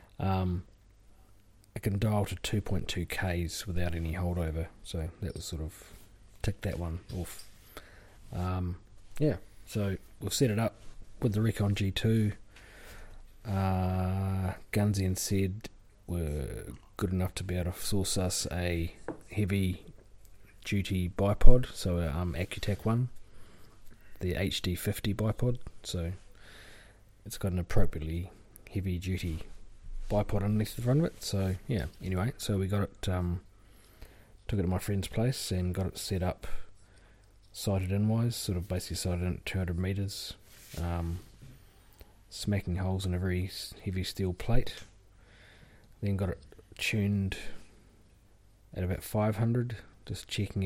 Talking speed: 135 wpm